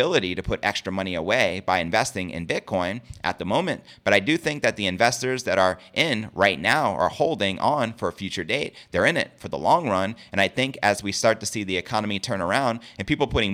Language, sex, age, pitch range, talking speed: English, male, 30-49, 95-115 Hz, 235 wpm